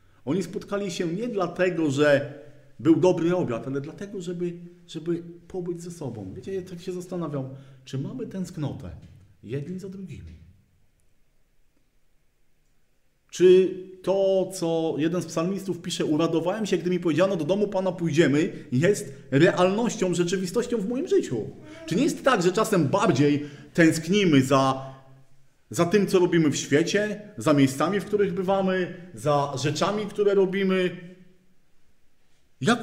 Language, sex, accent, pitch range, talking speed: Polish, male, native, 135-185 Hz, 135 wpm